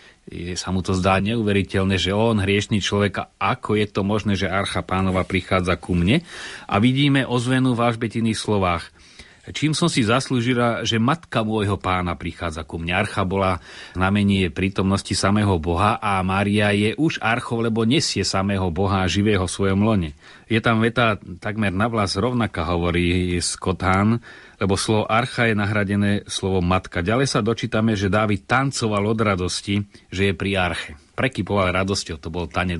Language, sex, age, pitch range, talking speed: Slovak, male, 30-49, 95-110 Hz, 165 wpm